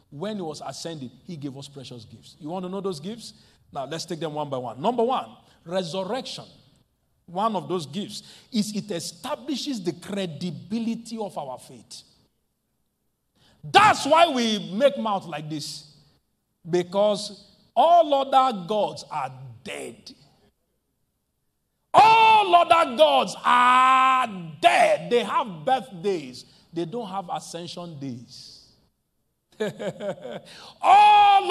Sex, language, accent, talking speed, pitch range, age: male, English, Nigerian, 120 wpm, 160-250 Hz, 50-69